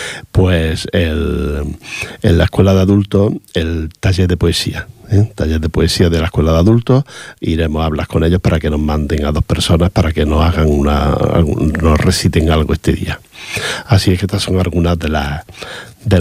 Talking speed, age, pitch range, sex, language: 190 wpm, 50-69, 80-100 Hz, male, Portuguese